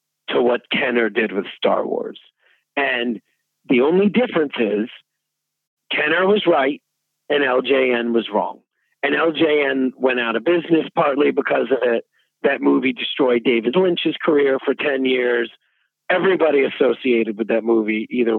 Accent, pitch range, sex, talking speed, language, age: American, 115-160 Hz, male, 145 wpm, English, 50-69